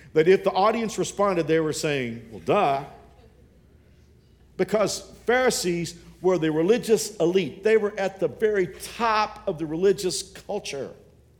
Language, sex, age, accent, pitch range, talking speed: English, male, 50-69, American, 125-185 Hz, 135 wpm